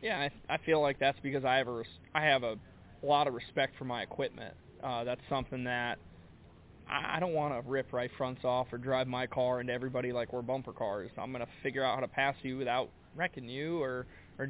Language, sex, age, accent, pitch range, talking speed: English, male, 20-39, American, 125-140 Hz, 240 wpm